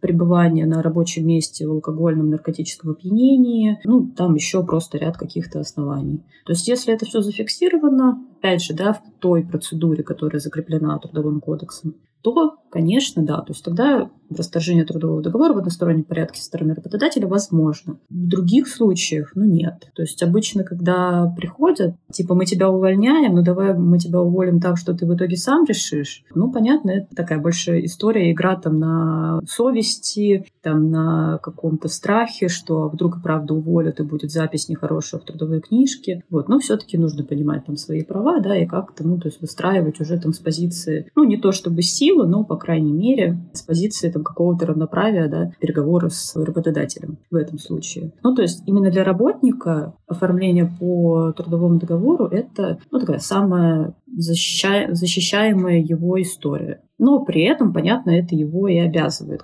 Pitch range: 160-195 Hz